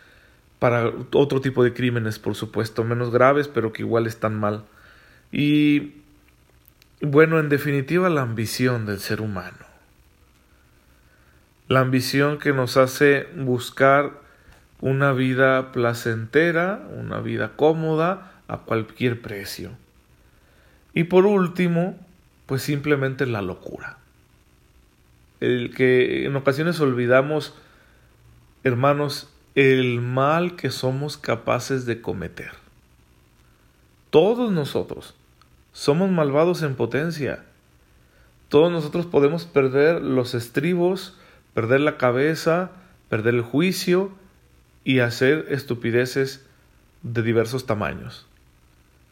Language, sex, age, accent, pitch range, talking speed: Spanish, male, 40-59, Mexican, 110-145 Hz, 100 wpm